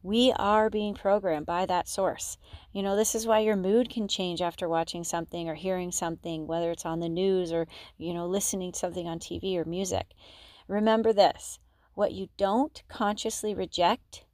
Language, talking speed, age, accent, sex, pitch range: English, 185 wpm, 30-49, American, female, 175-225 Hz